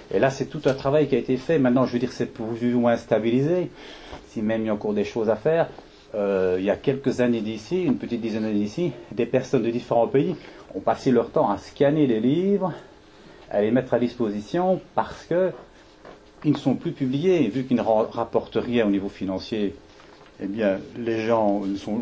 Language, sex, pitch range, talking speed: French, male, 105-135 Hz, 215 wpm